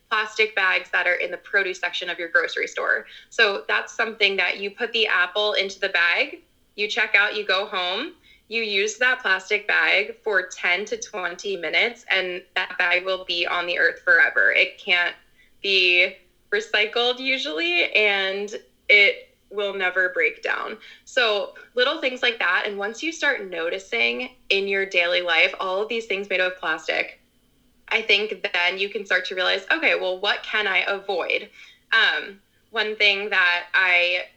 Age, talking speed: 20-39, 175 wpm